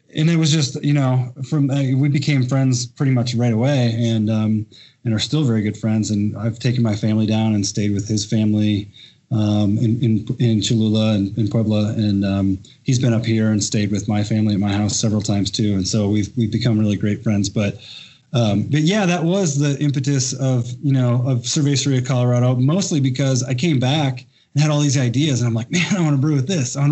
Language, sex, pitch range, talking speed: English, male, 110-135 Hz, 230 wpm